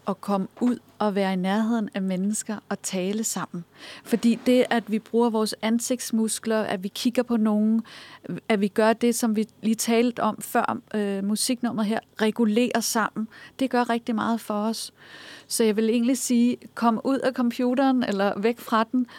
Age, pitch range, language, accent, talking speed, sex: 40-59, 205-235 Hz, Danish, native, 180 wpm, female